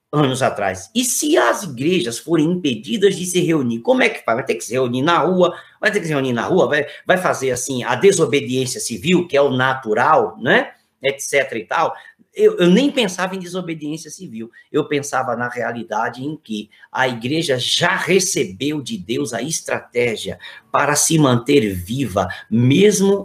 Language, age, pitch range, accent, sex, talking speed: Portuguese, 50-69, 120-155 Hz, Brazilian, male, 180 wpm